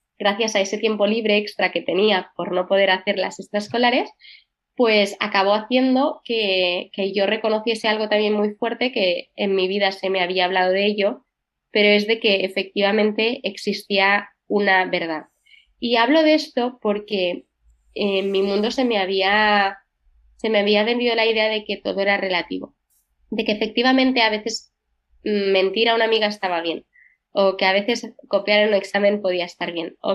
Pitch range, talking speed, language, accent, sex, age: 185-220 Hz, 170 wpm, Spanish, Spanish, female, 20-39